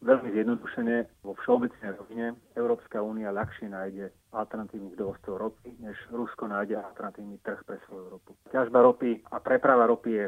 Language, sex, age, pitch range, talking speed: Slovak, male, 30-49, 105-125 Hz, 150 wpm